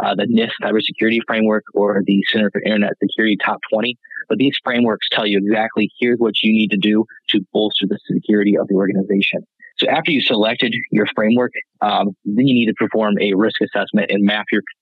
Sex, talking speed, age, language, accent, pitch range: male, 205 wpm, 20-39, English, American, 105-120 Hz